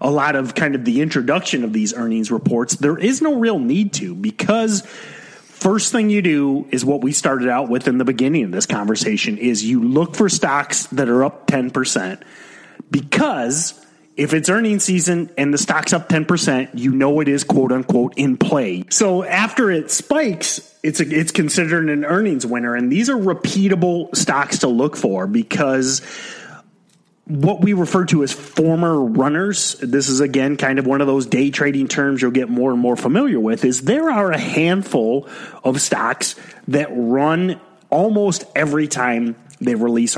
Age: 30-49